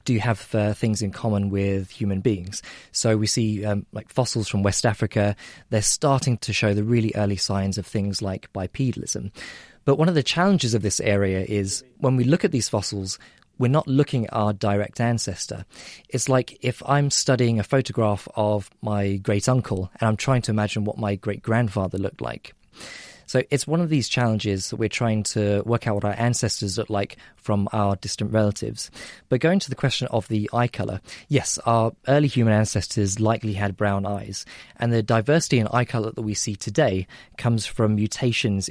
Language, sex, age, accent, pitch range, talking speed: English, male, 20-39, British, 100-120 Hz, 195 wpm